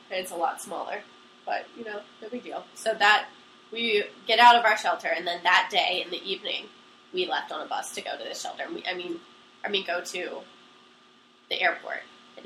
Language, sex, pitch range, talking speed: English, female, 180-255 Hz, 220 wpm